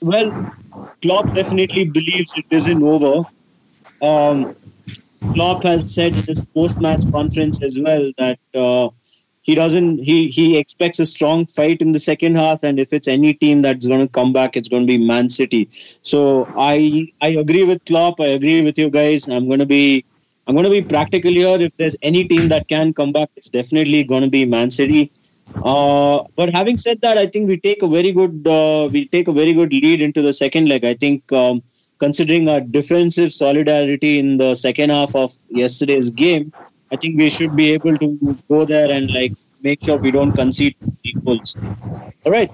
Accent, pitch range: Indian, 135-165 Hz